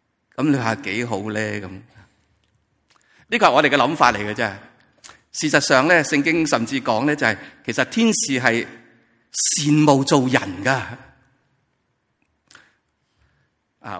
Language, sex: Chinese, male